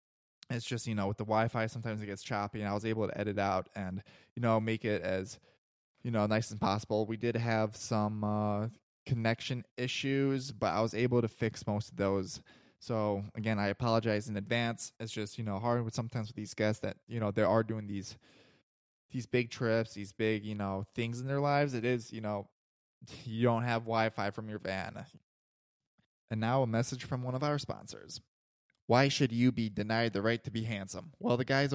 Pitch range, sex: 105-120 Hz, male